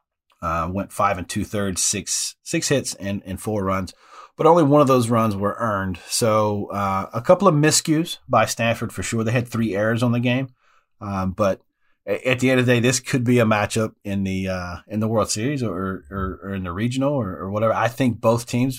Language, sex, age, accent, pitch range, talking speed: English, male, 40-59, American, 95-130 Hz, 225 wpm